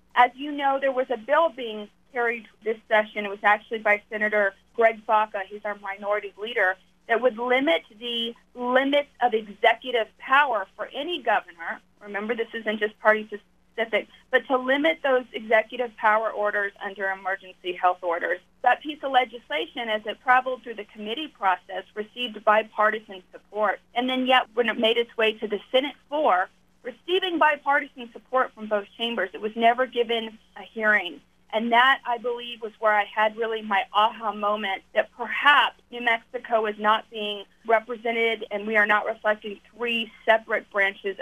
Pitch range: 210-245 Hz